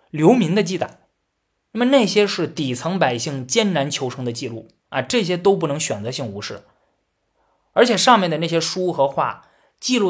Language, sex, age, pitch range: Chinese, male, 20-39, 130-200 Hz